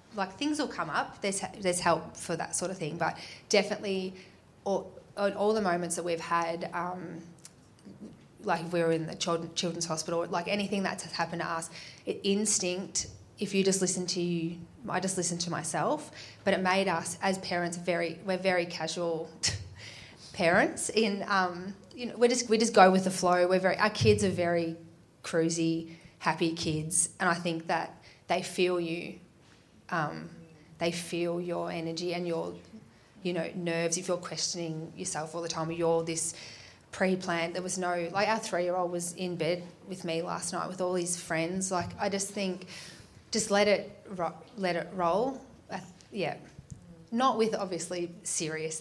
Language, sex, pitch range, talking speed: English, female, 170-195 Hz, 175 wpm